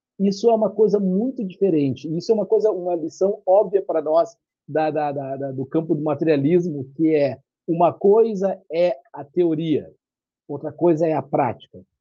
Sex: male